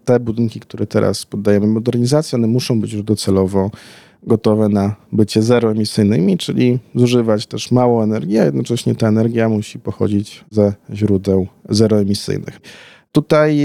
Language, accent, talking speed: Polish, native, 130 wpm